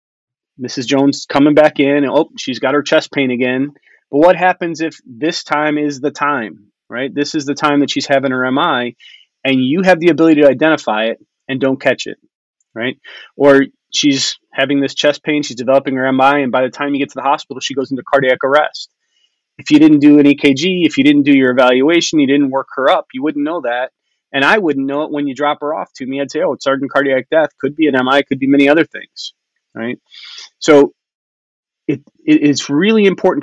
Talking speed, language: 220 wpm, English